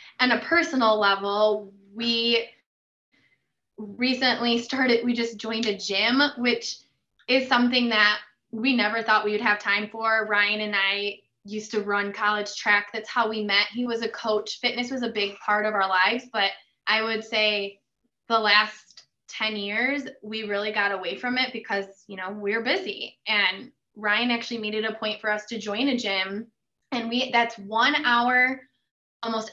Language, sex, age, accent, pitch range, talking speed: English, female, 20-39, American, 210-245 Hz, 175 wpm